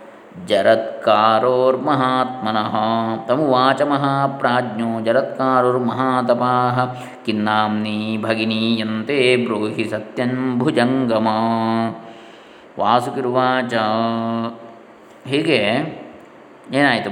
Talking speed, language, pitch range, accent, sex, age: 35 wpm, Kannada, 115-135 Hz, native, male, 20-39